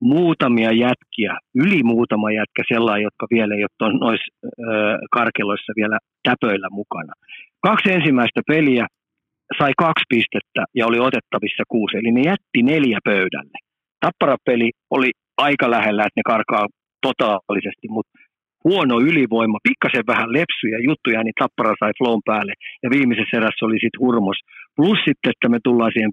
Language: Finnish